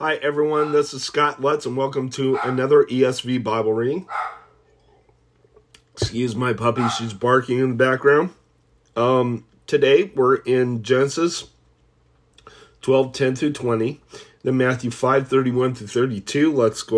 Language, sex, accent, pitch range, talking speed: English, male, American, 120-155 Hz, 120 wpm